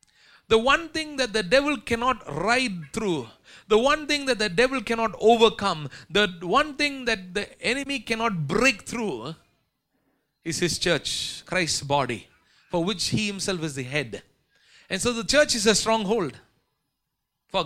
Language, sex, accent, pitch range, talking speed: English, male, Indian, 175-255 Hz, 155 wpm